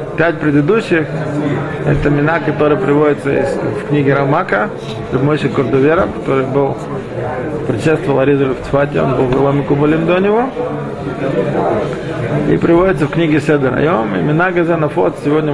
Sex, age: male, 20-39